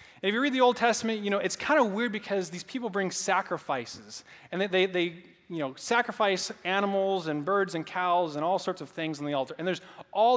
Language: English